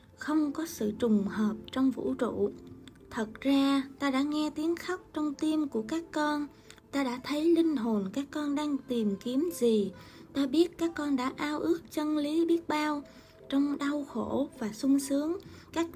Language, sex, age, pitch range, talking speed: Vietnamese, female, 20-39, 235-300 Hz, 185 wpm